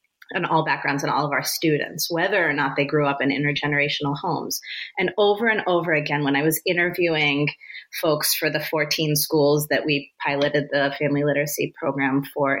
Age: 30-49